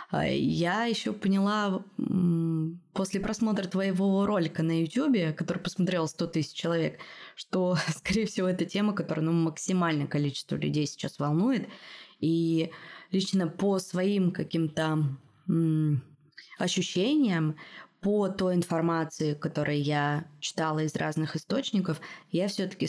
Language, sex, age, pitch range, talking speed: Russian, female, 20-39, 160-215 Hz, 115 wpm